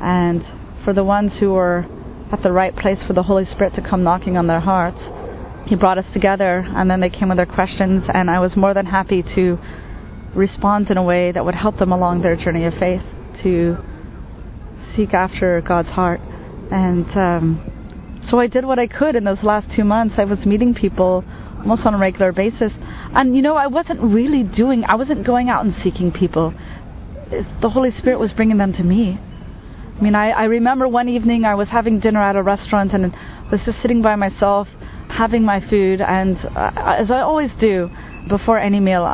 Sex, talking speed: female, 205 wpm